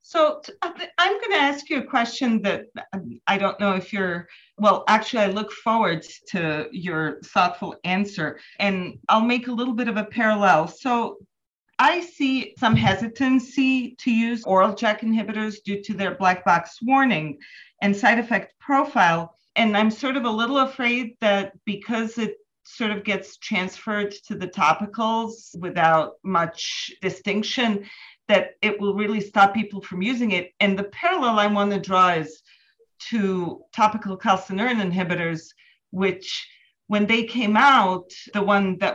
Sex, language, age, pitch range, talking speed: female, English, 40-59, 185-230 Hz, 155 wpm